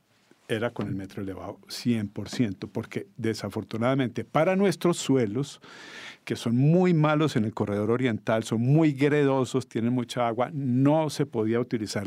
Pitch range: 115-150 Hz